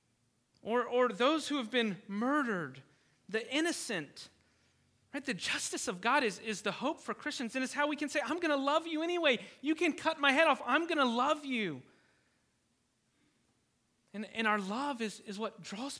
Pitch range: 185-250 Hz